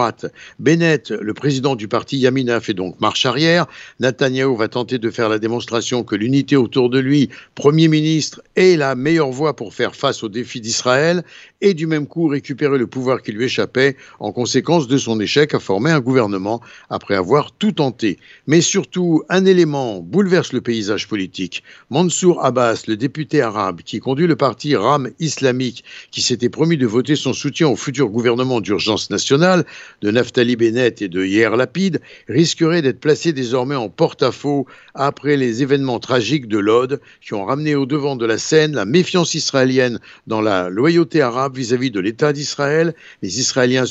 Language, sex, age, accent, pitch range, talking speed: Italian, male, 60-79, French, 120-155 Hz, 175 wpm